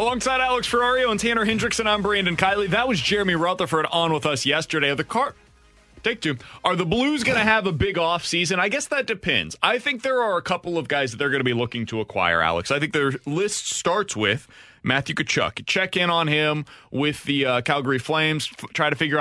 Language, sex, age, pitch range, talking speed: English, male, 30-49, 120-180 Hz, 225 wpm